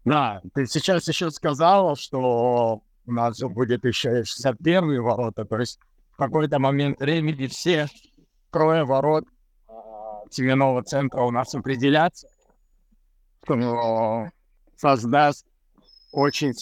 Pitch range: 120-150 Hz